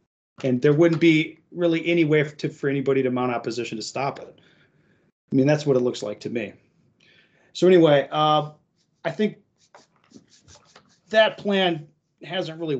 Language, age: English, 30-49